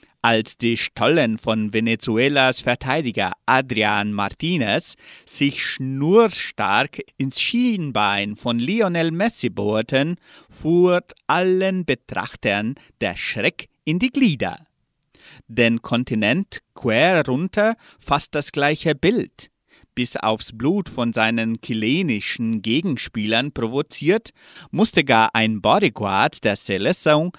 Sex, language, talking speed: male, German, 100 wpm